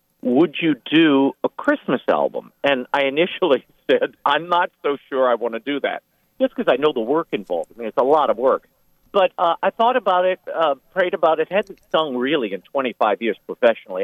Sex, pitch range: male, 115-180 Hz